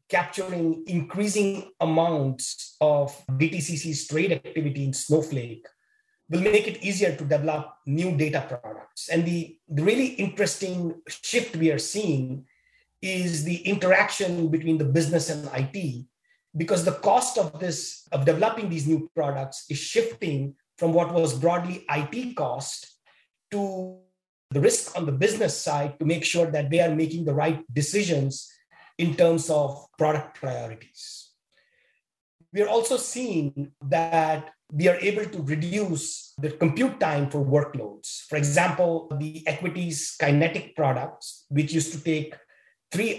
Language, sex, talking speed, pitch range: English, male, 140 wpm, 150-185 Hz